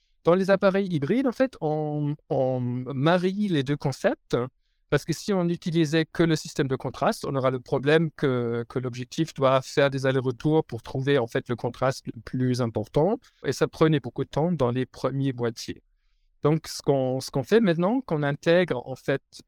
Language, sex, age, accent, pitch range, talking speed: French, male, 50-69, French, 130-165 Hz, 195 wpm